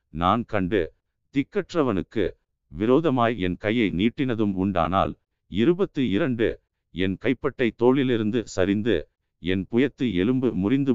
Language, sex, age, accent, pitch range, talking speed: Tamil, male, 50-69, native, 90-130 Hz, 95 wpm